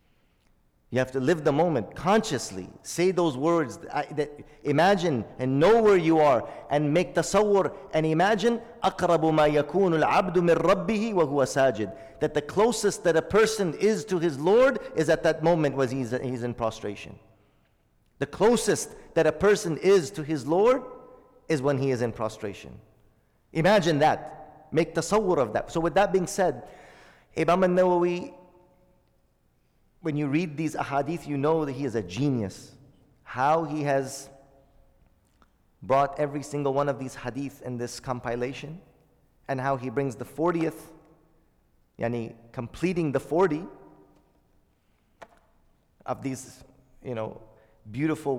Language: English